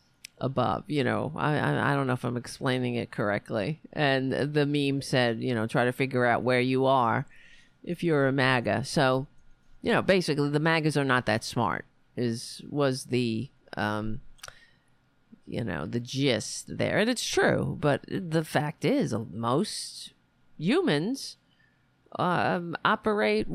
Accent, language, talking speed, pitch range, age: American, English, 155 wpm, 125-175 Hz, 40-59